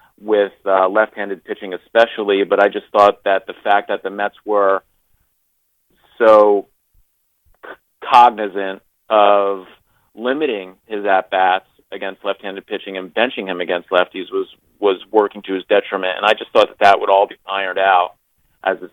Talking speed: 160 wpm